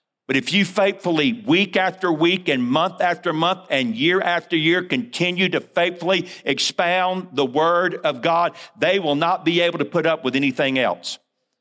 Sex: male